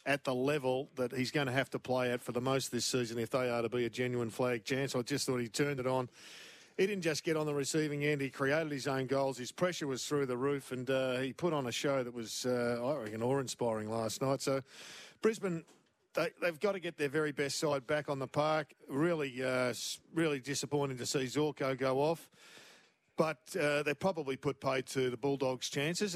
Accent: Australian